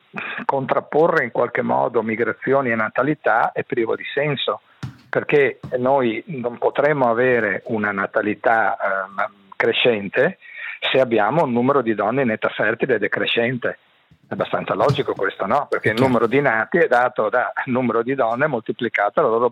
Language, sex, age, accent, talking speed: Italian, male, 50-69, native, 155 wpm